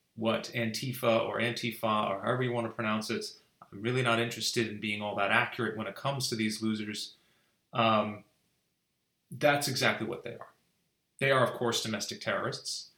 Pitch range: 110-145 Hz